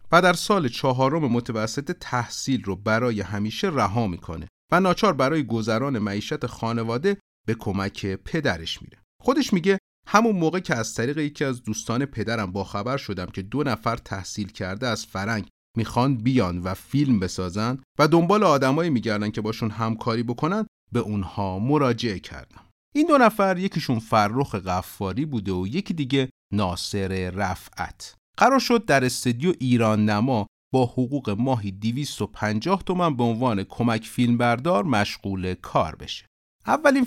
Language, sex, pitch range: Persian, male, 105-150 Hz